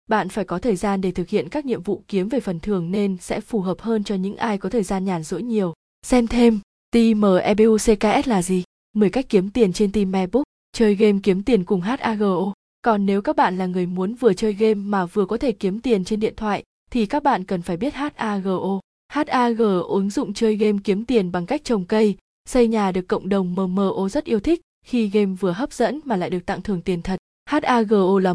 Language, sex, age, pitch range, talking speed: Vietnamese, female, 20-39, 190-230 Hz, 225 wpm